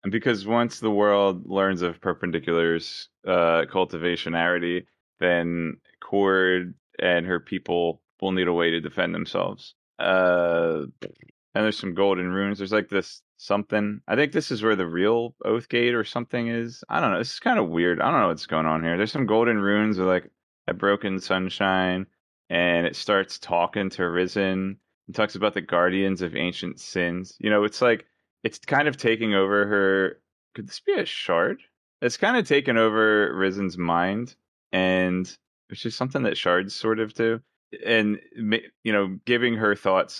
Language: English